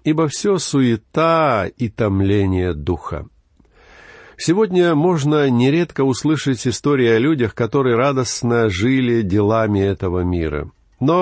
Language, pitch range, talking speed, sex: Russian, 100-145 Hz, 105 wpm, male